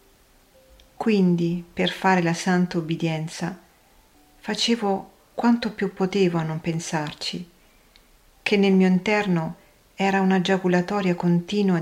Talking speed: 105 wpm